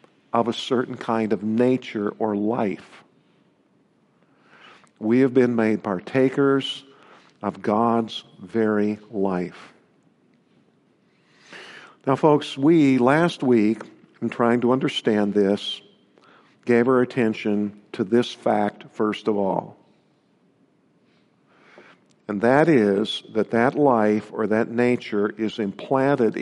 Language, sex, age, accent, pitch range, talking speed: English, male, 50-69, American, 105-125 Hz, 105 wpm